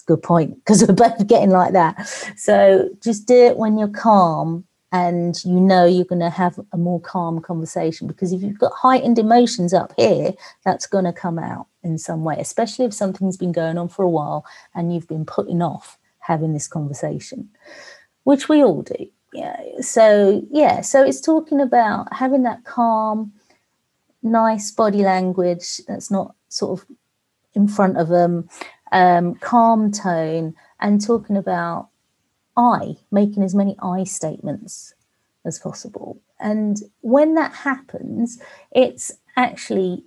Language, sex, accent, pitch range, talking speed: English, female, British, 180-235 Hz, 155 wpm